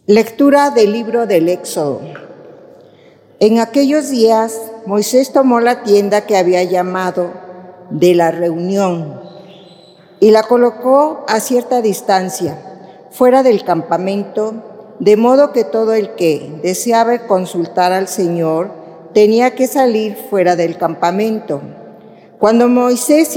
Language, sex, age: Spanish, female, 50-69